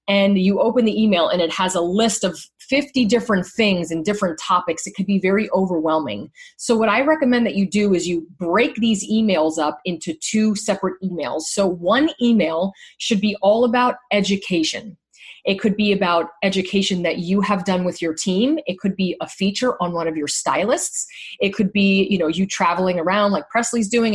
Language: English